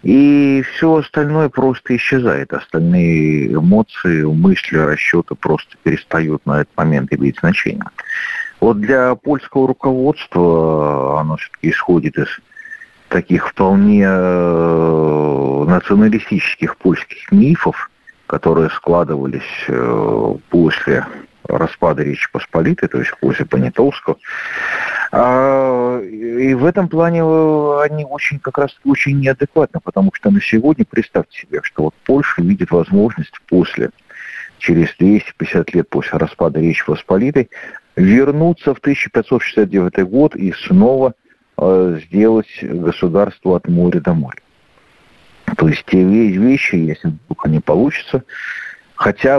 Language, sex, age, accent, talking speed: Russian, male, 50-69, native, 110 wpm